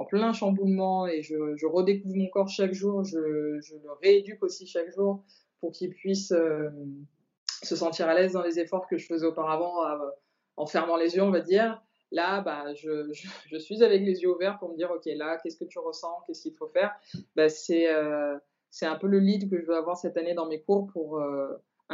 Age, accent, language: 20-39, French, French